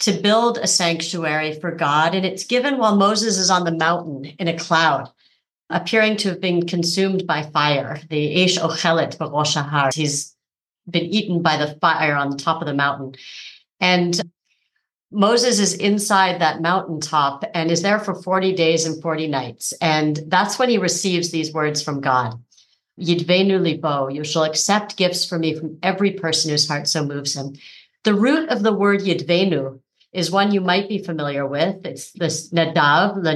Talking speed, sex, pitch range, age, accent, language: 175 wpm, female, 155-195 Hz, 50-69, American, English